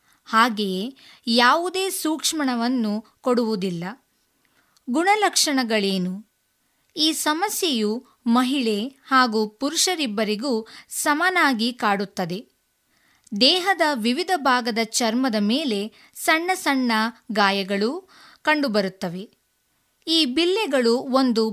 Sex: female